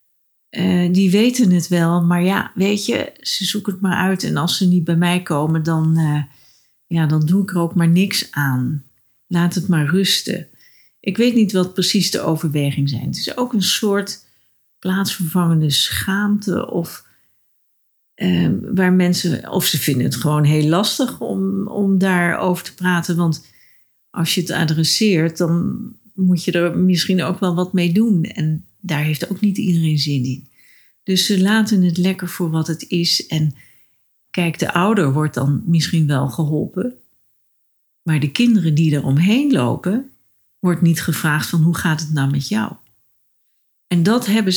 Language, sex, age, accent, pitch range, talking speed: Dutch, female, 40-59, Dutch, 150-195 Hz, 170 wpm